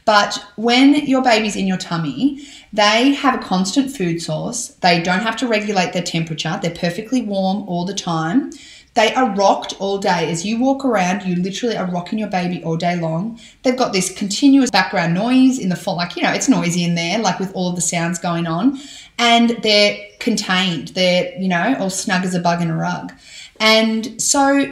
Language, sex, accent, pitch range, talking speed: English, female, Australian, 180-245 Hz, 200 wpm